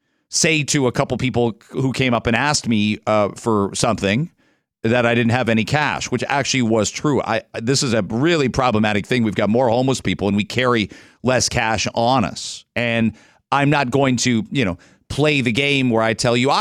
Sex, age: male, 40-59